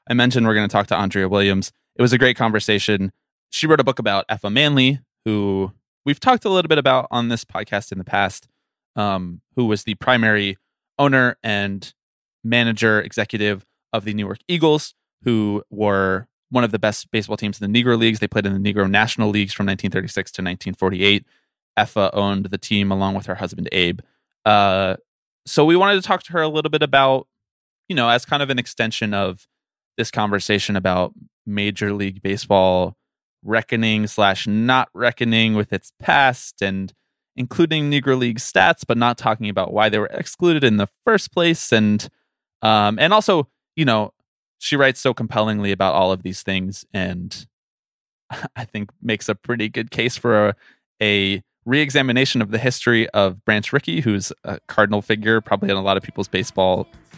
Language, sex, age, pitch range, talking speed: English, male, 20-39, 100-125 Hz, 180 wpm